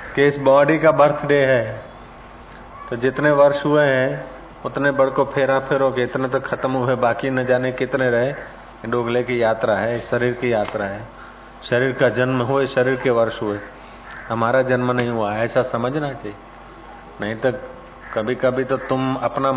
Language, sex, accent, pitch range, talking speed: Hindi, male, native, 115-135 Hz, 165 wpm